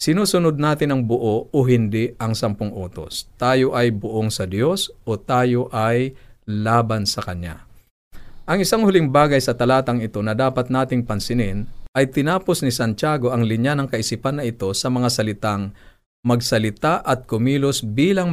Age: 50-69